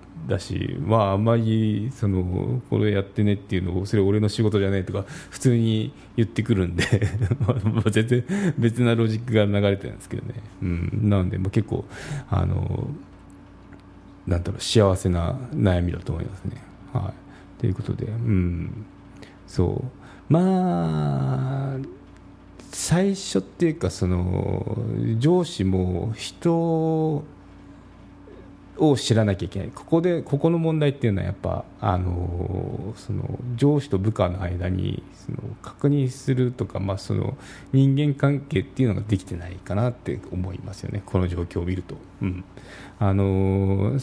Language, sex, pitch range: Japanese, male, 95-125 Hz